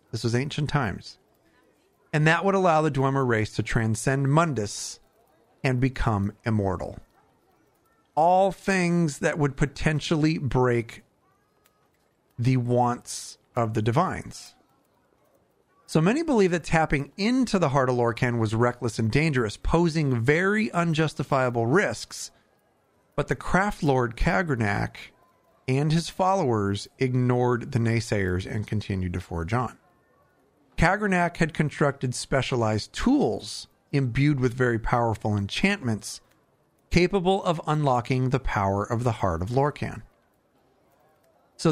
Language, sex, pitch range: English, male, 115-160 Hz